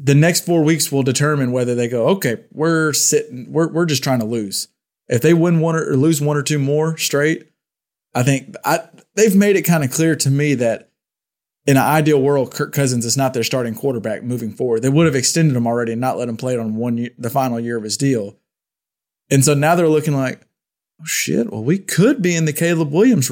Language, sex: English, male